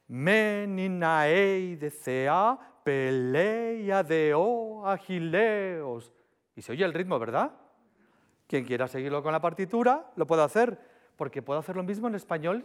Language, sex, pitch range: Spanish, male, 135-195 Hz